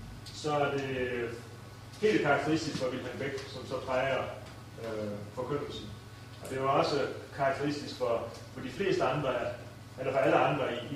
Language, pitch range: Danish, 115-150 Hz